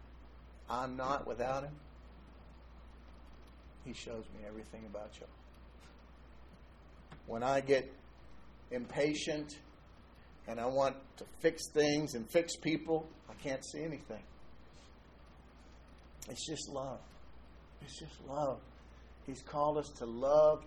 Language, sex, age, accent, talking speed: English, male, 50-69, American, 110 wpm